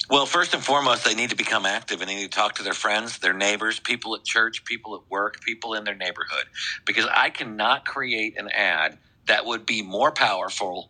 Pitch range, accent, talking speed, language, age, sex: 100-135 Hz, American, 220 wpm, English, 50-69, male